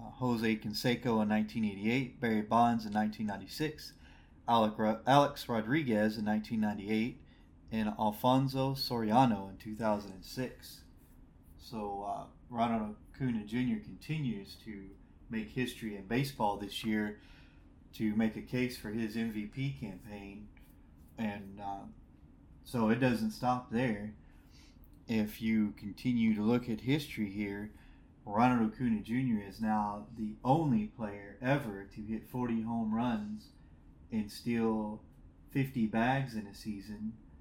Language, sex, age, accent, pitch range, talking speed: English, male, 30-49, American, 105-120 Hz, 120 wpm